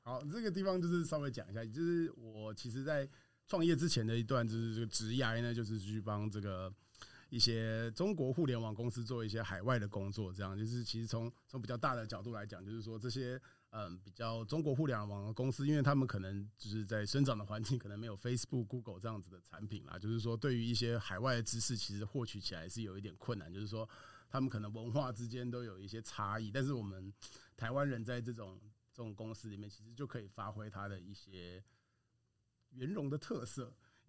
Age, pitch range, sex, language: 30-49, 105-125 Hz, male, Chinese